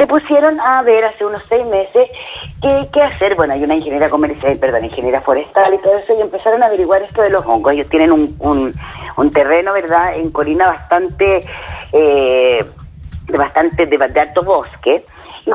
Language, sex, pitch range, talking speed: Spanish, female, 150-215 Hz, 185 wpm